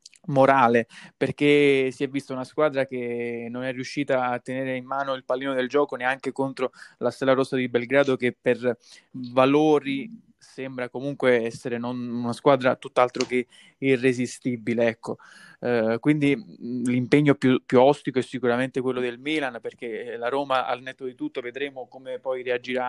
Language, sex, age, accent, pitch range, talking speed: Italian, male, 20-39, native, 120-135 Hz, 165 wpm